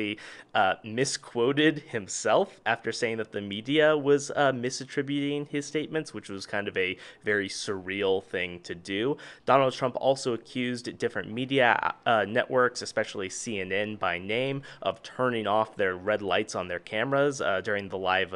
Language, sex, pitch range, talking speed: English, male, 105-140 Hz, 155 wpm